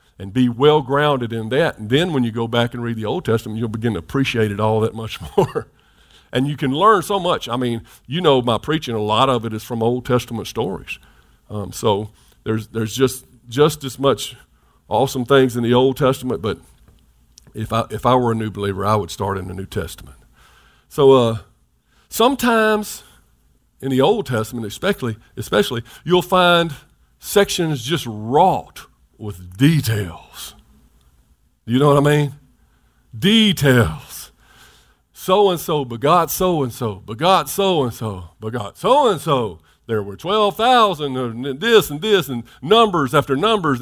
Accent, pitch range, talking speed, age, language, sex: American, 110-185 Hz, 170 wpm, 50-69, English, male